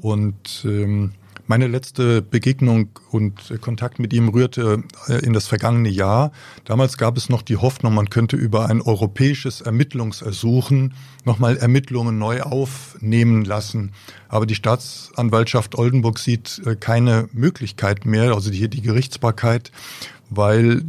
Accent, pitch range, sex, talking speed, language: German, 110-130 Hz, male, 125 wpm, German